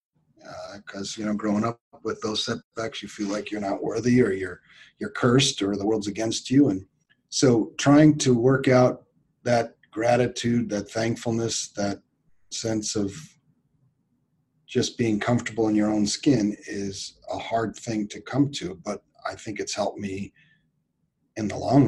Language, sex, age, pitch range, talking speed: English, male, 40-59, 105-125 Hz, 165 wpm